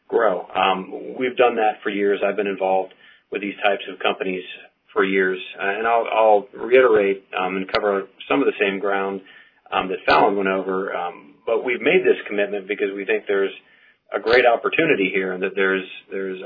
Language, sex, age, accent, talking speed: English, male, 30-49, American, 190 wpm